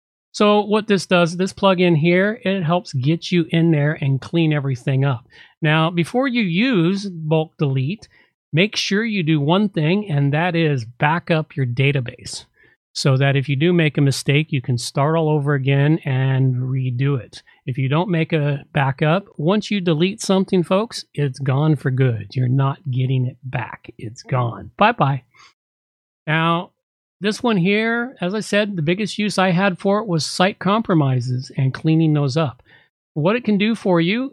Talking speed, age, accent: 180 wpm, 40-59, American